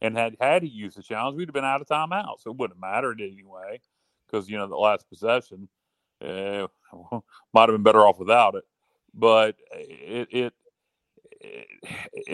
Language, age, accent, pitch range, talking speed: English, 30-49, American, 95-105 Hz, 180 wpm